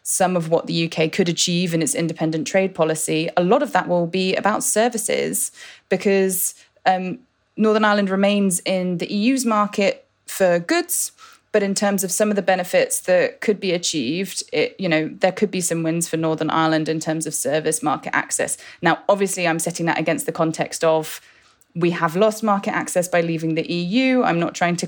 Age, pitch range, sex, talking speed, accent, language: 20-39, 160-195 Hz, female, 195 wpm, British, English